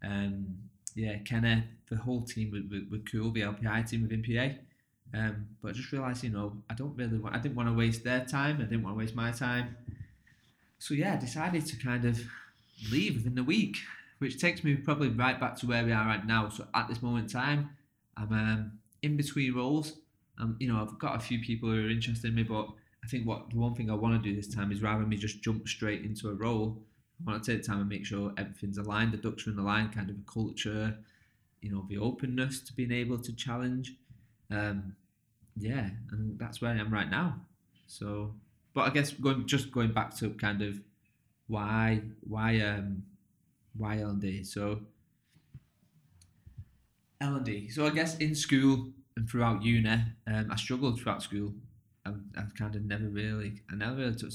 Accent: British